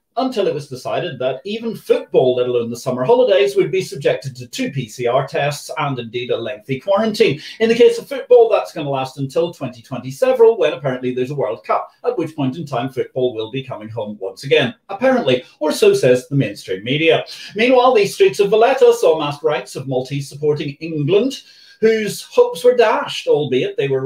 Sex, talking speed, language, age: male, 200 wpm, English, 40-59